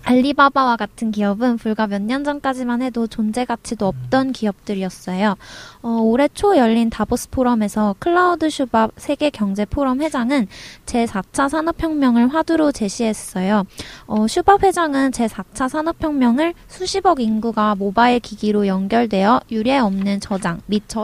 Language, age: Korean, 20-39